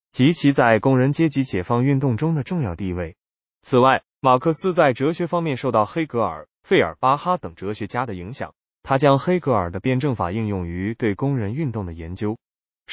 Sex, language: male, Chinese